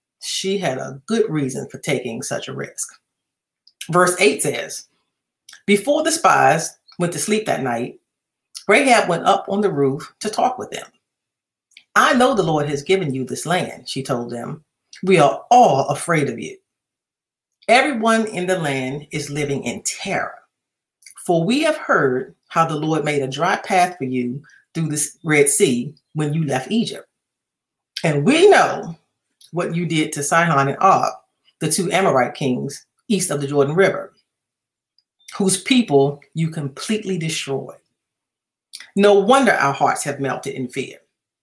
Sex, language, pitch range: female, English, 140-195 Hz